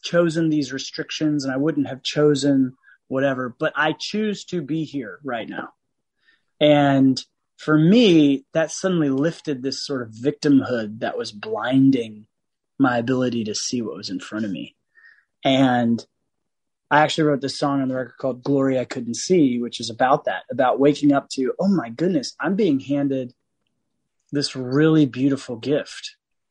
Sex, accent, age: male, American, 30-49